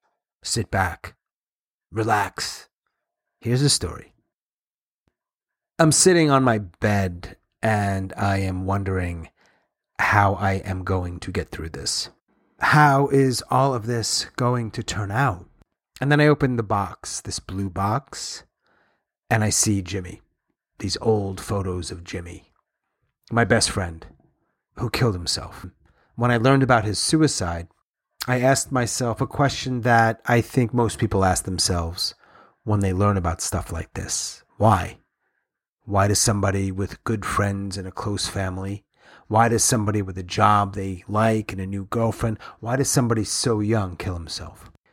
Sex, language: male, English